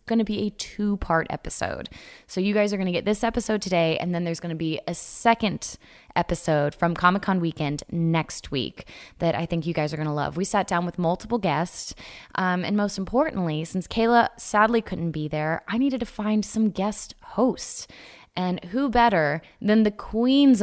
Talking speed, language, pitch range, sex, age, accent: 200 wpm, English, 160-215 Hz, female, 20-39, American